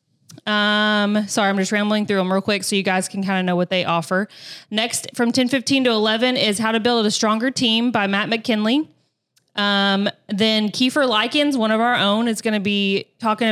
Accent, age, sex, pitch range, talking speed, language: American, 20-39, female, 195-230 Hz, 215 wpm, English